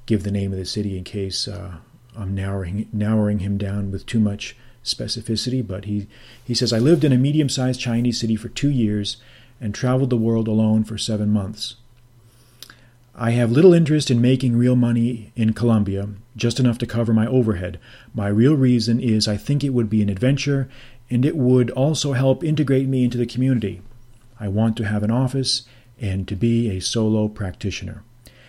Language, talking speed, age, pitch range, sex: English, 190 wpm, 40-59, 110-125 Hz, male